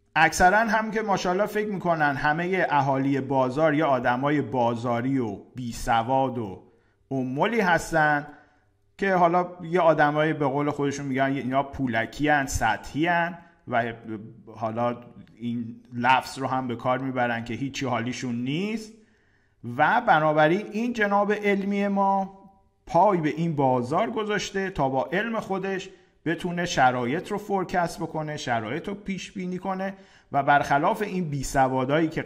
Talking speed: 135 wpm